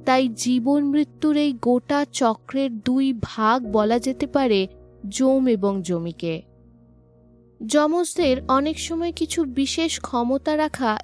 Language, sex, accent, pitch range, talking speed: Bengali, female, native, 215-295 Hz, 110 wpm